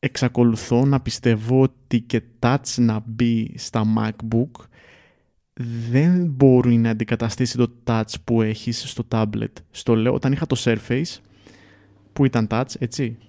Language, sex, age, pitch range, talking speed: Greek, male, 20-39, 110-130 Hz, 135 wpm